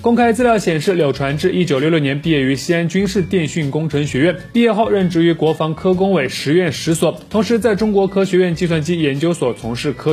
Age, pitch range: 20-39, 140-195 Hz